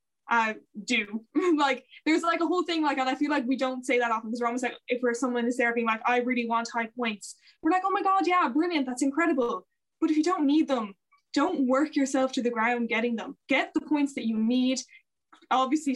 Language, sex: English, female